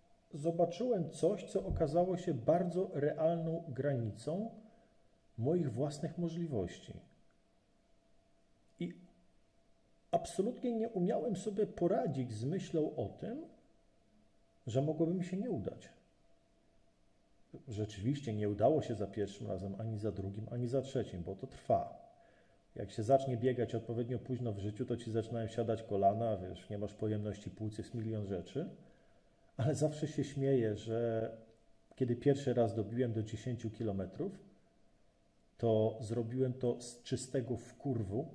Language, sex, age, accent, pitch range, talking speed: Polish, male, 40-59, native, 110-150 Hz, 130 wpm